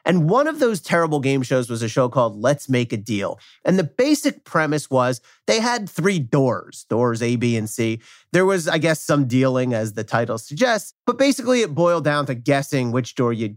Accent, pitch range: American, 120-180 Hz